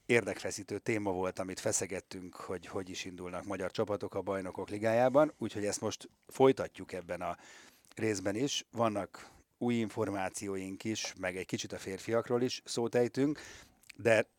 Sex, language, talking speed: male, Hungarian, 140 wpm